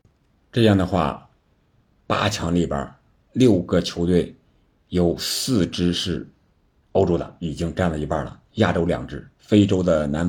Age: 50-69